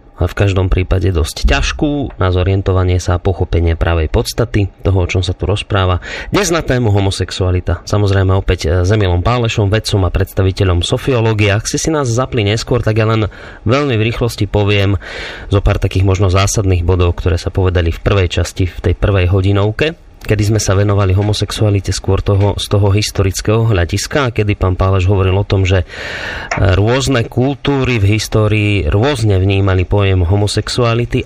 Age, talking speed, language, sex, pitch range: 30-49, 165 wpm, Slovak, male, 95-110 Hz